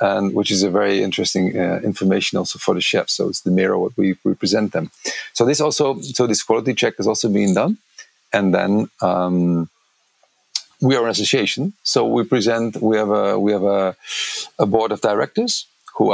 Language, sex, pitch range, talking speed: Bulgarian, male, 95-110 Hz, 195 wpm